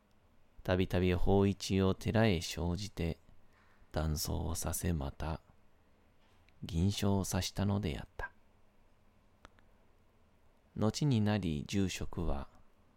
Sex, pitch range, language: male, 85-105 Hz, Japanese